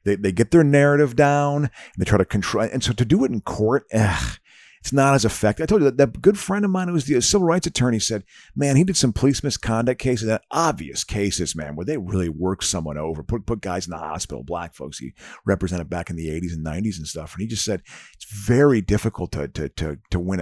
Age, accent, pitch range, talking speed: 50-69, American, 95-140 Hz, 255 wpm